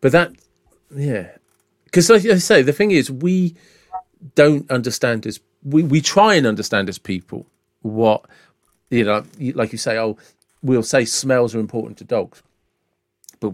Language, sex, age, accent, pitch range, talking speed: English, male, 40-59, British, 105-130 Hz, 160 wpm